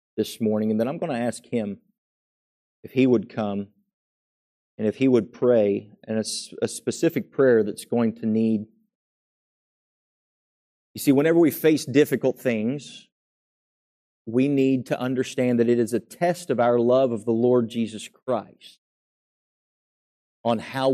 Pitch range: 105-125 Hz